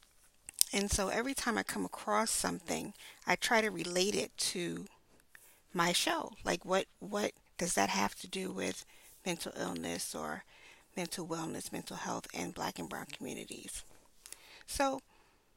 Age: 40-59